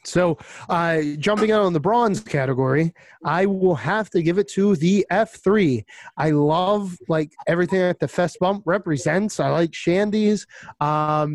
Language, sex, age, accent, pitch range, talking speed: English, male, 30-49, American, 150-200 Hz, 160 wpm